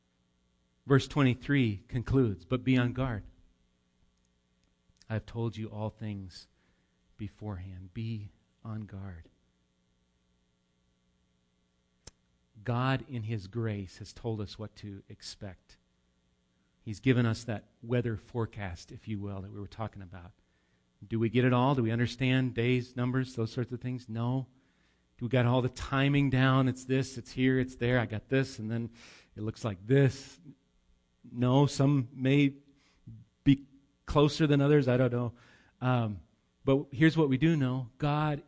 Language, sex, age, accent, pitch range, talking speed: English, male, 40-59, American, 100-145 Hz, 150 wpm